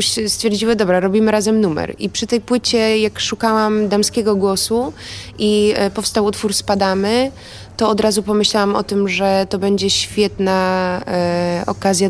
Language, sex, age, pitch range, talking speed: Polish, female, 20-39, 170-210 Hz, 140 wpm